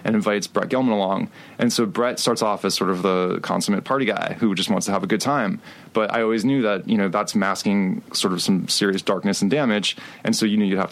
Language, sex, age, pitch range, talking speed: English, male, 20-39, 100-125 Hz, 260 wpm